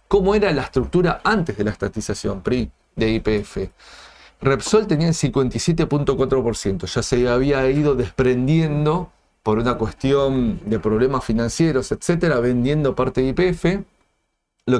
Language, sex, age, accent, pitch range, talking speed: Spanish, male, 40-59, Argentinian, 115-145 Hz, 130 wpm